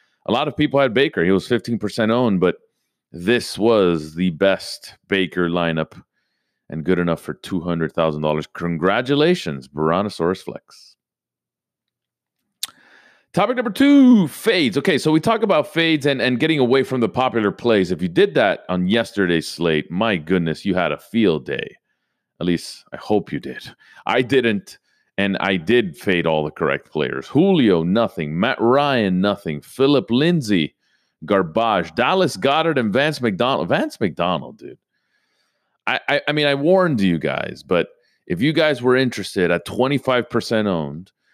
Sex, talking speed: male, 155 wpm